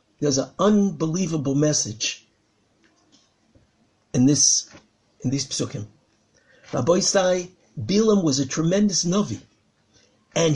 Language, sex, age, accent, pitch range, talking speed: English, male, 50-69, American, 150-235 Hz, 95 wpm